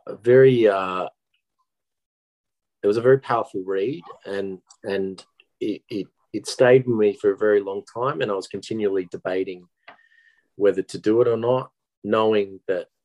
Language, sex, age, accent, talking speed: English, male, 30-49, Australian, 160 wpm